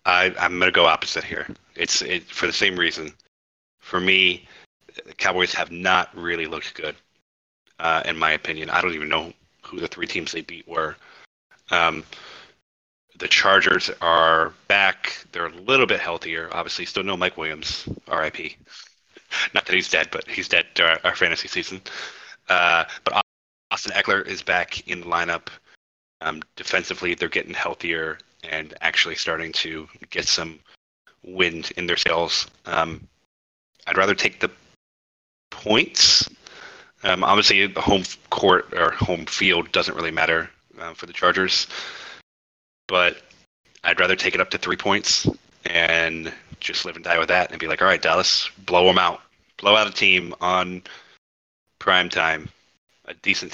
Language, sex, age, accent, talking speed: English, male, 30-49, American, 160 wpm